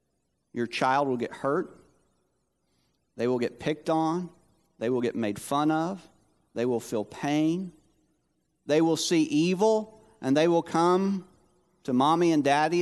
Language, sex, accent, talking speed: English, male, American, 150 wpm